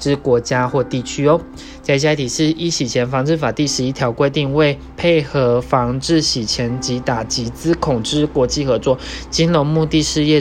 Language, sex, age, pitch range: Chinese, male, 20-39, 120-150 Hz